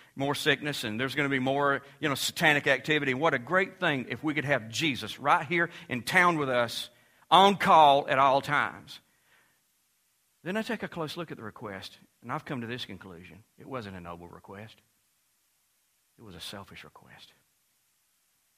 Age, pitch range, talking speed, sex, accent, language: 50-69, 95-140 Hz, 185 wpm, male, American, English